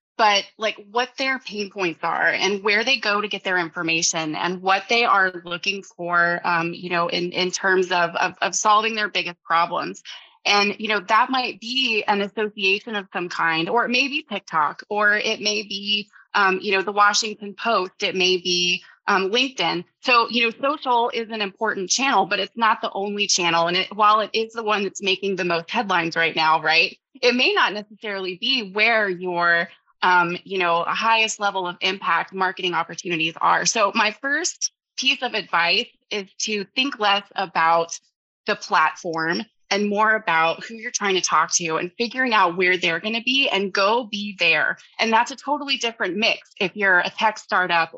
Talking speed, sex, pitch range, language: 195 wpm, female, 180-220 Hz, English